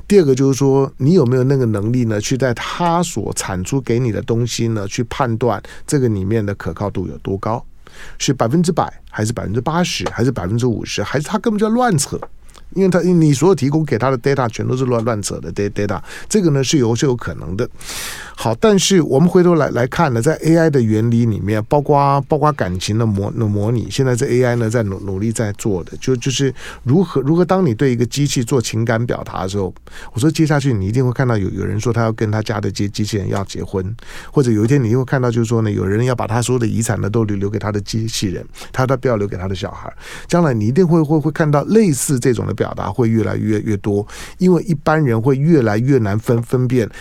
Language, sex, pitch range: Chinese, male, 110-150 Hz